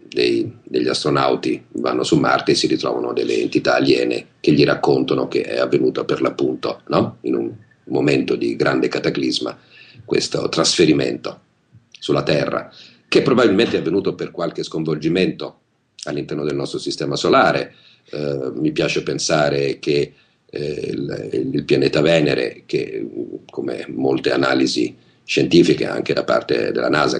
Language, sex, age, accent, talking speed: Italian, male, 50-69, native, 135 wpm